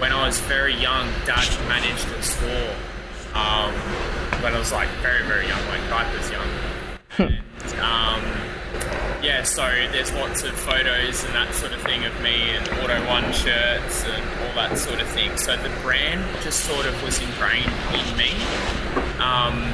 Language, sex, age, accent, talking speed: English, male, 20-39, Australian, 175 wpm